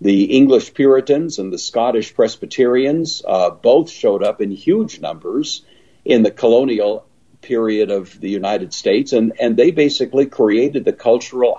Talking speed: 150 wpm